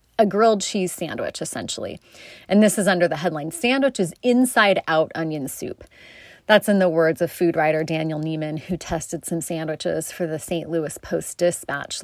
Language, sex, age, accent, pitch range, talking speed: English, female, 30-49, American, 160-205 Hz, 170 wpm